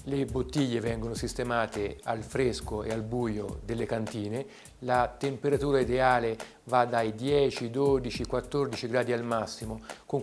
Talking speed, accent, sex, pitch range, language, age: 135 wpm, native, male, 115-160 Hz, Italian, 50-69